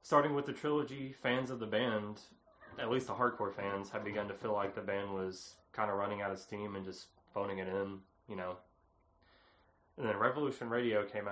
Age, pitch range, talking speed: 20-39, 100-120 Hz, 205 wpm